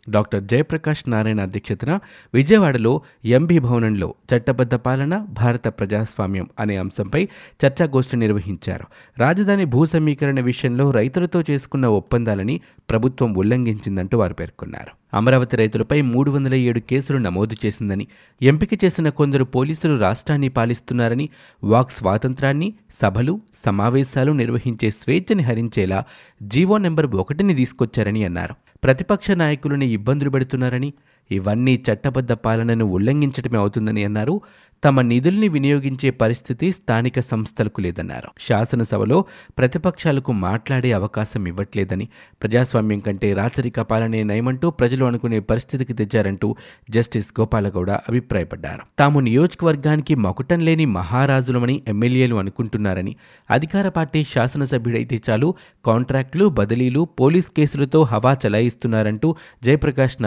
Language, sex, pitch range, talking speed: Telugu, male, 110-140 Hz, 100 wpm